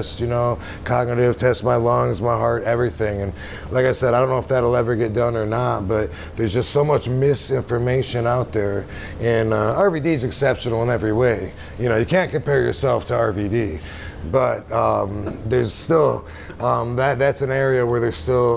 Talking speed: 195 wpm